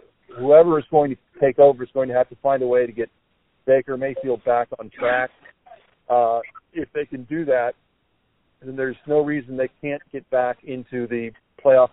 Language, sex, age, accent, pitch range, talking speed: English, male, 50-69, American, 120-145 Hz, 190 wpm